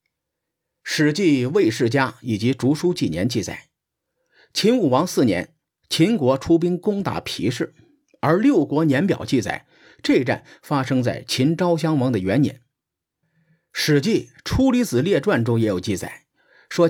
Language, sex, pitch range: Chinese, male, 120-170 Hz